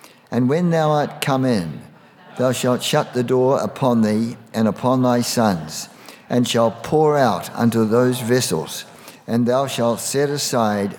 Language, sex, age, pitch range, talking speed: English, male, 60-79, 115-145 Hz, 160 wpm